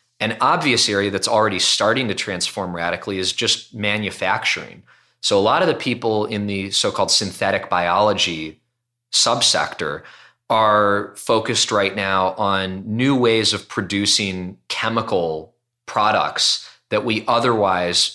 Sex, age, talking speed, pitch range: male, 20-39, 125 wpm, 95-115 Hz